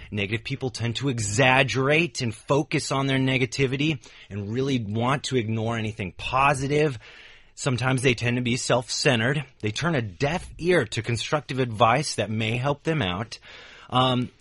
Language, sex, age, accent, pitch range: Chinese, male, 30-49, American, 105-135 Hz